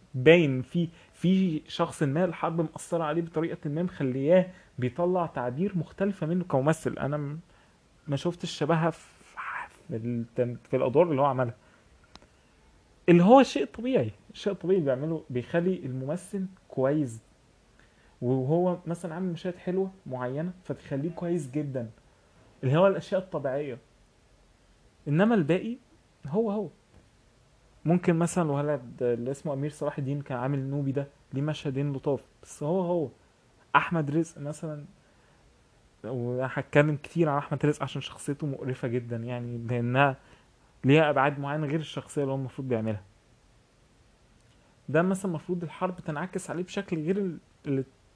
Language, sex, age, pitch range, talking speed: Arabic, male, 20-39, 130-175 Hz, 130 wpm